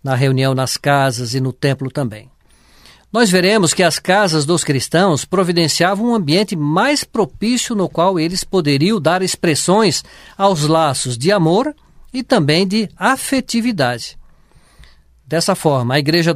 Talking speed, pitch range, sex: 140 wpm, 140-195 Hz, male